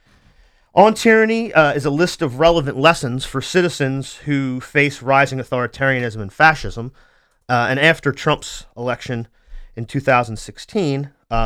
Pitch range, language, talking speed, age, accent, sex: 120-150 Hz, English, 125 wpm, 30-49, American, male